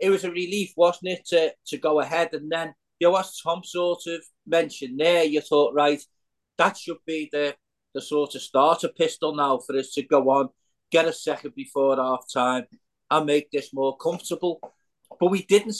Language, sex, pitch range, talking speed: English, male, 150-200 Hz, 195 wpm